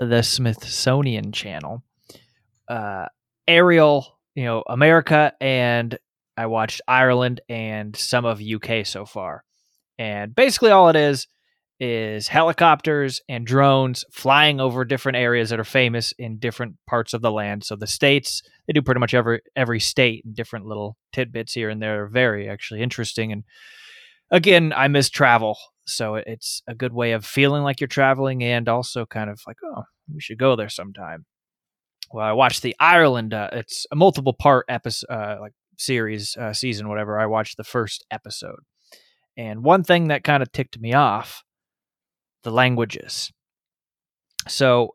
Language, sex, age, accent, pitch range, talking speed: English, male, 20-39, American, 110-140 Hz, 160 wpm